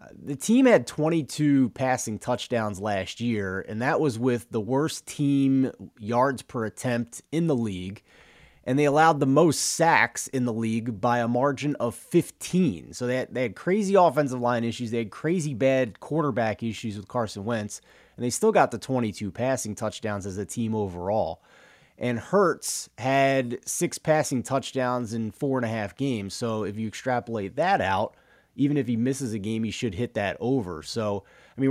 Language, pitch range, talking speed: English, 110-135 Hz, 180 wpm